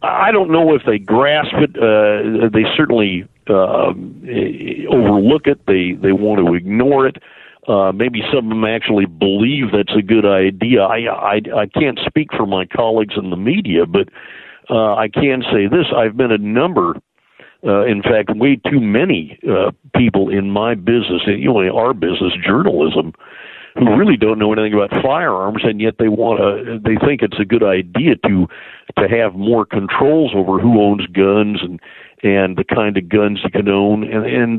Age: 50-69